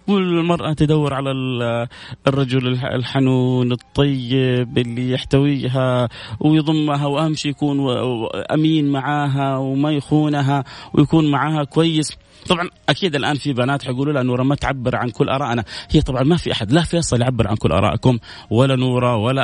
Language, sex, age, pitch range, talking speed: Arabic, male, 30-49, 120-150 Hz, 140 wpm